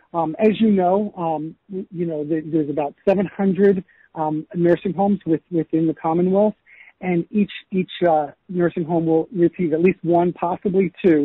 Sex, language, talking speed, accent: male, English, 160 wpm, American